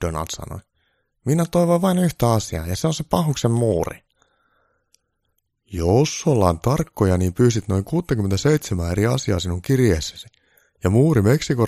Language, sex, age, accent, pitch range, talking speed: Finnish, male, 30-49, native, 90-125 Hz, 140 wpm